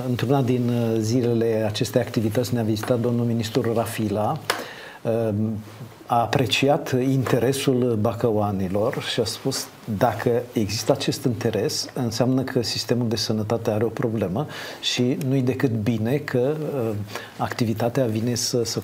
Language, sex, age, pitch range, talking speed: Romanian, male, 50-69, 110-135 Hz, 125 wpm